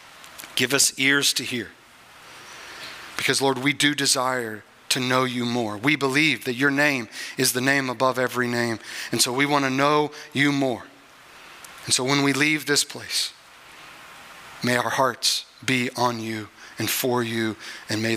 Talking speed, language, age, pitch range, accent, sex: 170 wpm, English, 40-59, 130-160 Hz, American, male